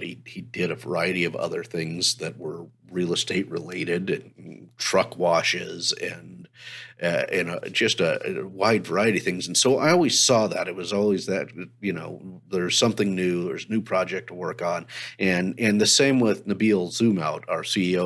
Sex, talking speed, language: male, 190 wpm, English